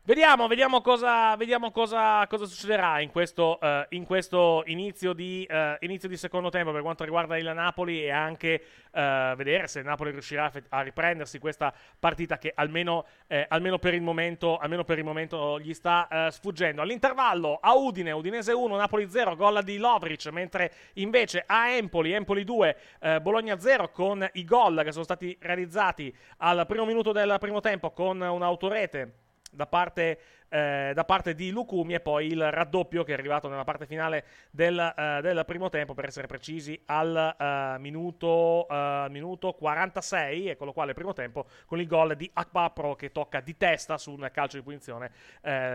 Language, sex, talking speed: Italian, male, 180 wpm